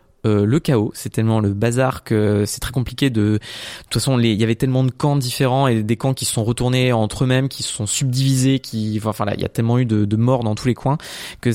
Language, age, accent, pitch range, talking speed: French, 20-39, French, 110-135 Hz, 275 wpm